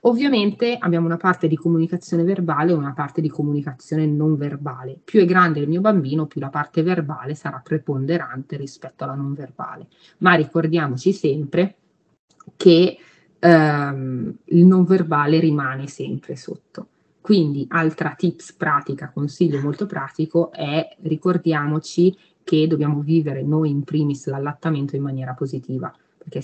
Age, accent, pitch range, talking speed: 30-49, native, 145-170 Hz, 140 wpm